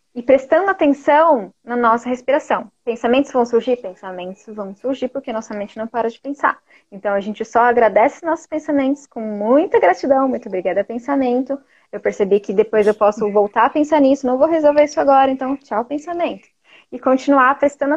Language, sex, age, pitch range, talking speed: Portuguese, female, 10-29, 215-280 Hz, 175 wpm